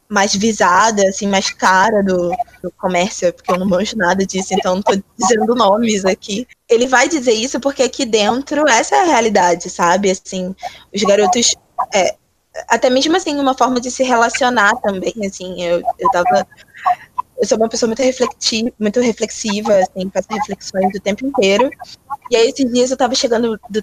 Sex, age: female, 20-39